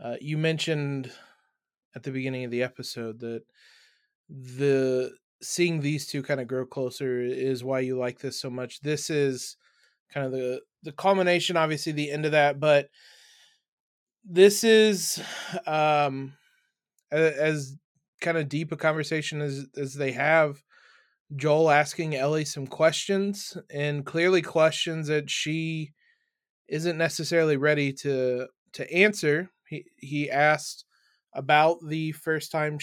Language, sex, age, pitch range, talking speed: English, male, 20-39, 140-165 Hz, 135 wpm